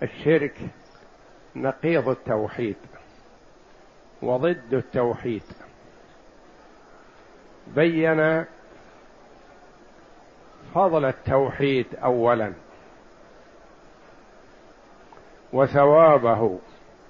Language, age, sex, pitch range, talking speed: Arabic, 60-79, male, 140-180 Hz, 35 wpm